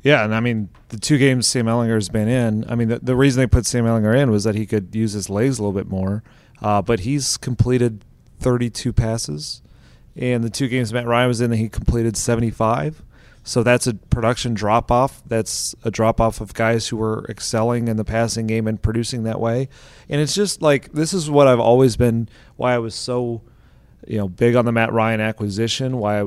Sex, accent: male, American